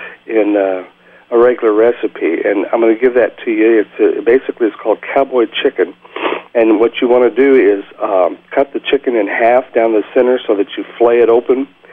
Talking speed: 200 wpm